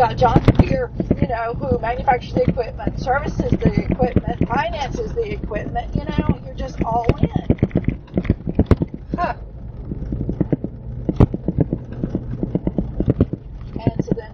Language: English